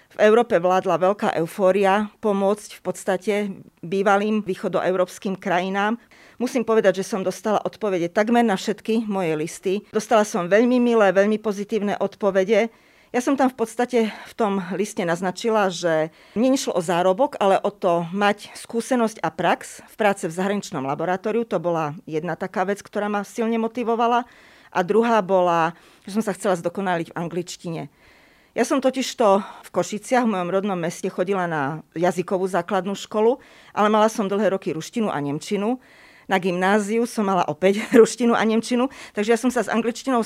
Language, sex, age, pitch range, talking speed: Slovak, female, 40-59, 185-225 Hz, 160 wpm